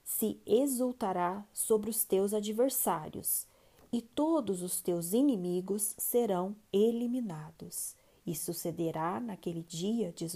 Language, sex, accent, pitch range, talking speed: Portuguese, female, Brazilian, 190-260 Hz, 105 wpm